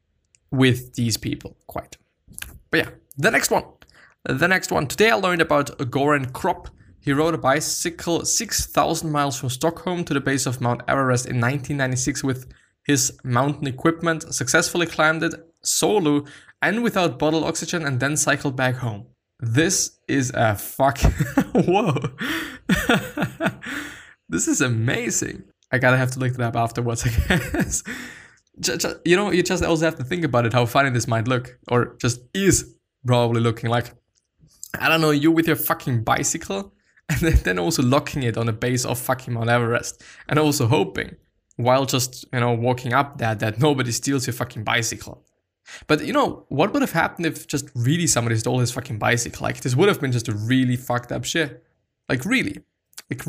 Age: 20-39